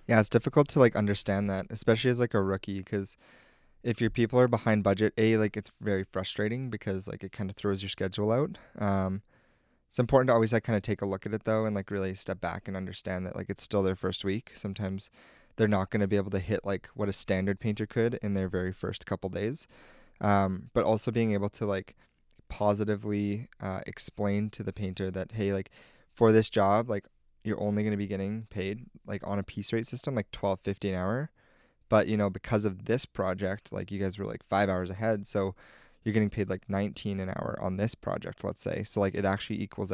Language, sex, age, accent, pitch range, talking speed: English, male, 20-39, American, 95-110 Hz, 230 wpm